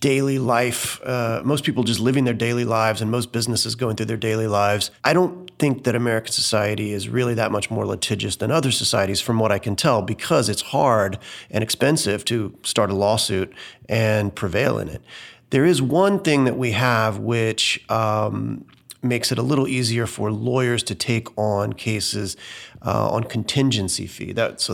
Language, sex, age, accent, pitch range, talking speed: English, male, 30-49, American, 105-125 Hz, 185 wpm